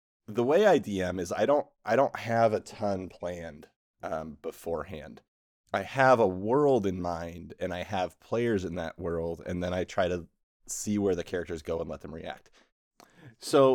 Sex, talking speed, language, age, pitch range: male, 190 wpm, English, 30-49, 95-140 Hz